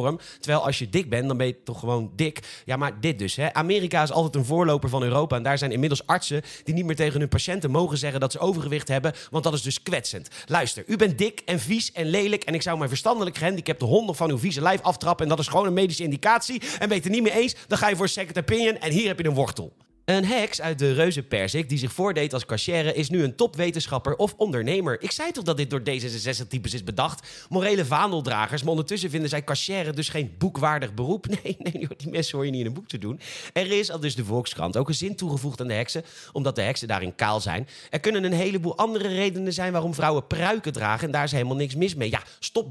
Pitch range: 135-190 Hz